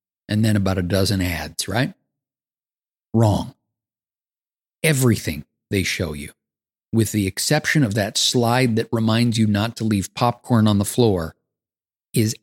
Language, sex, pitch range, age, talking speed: English, male, 105-145 Hz, 50-69, 140 wpm